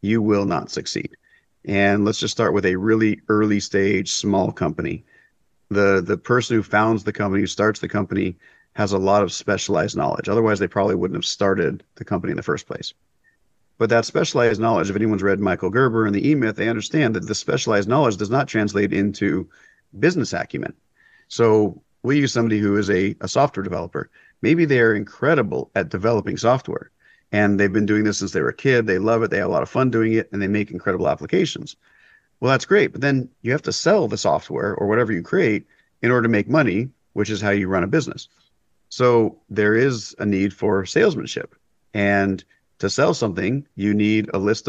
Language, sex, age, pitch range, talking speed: English, male, 50-69, 100-115 Hz, 205 wpm